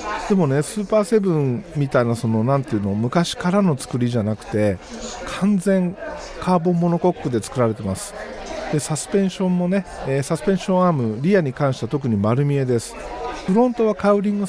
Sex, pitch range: male, 120-185 Hz